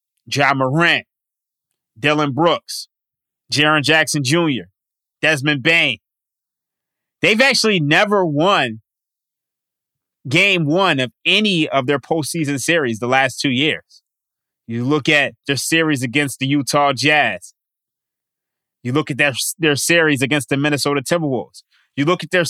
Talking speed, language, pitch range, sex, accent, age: 130 wpm, English, 140-180 Hz, male, American, 20-39